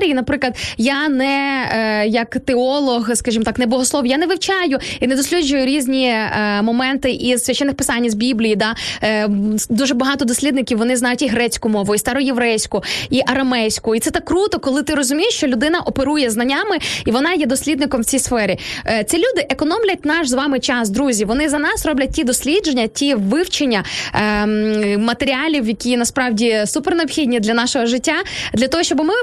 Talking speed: 170 wpm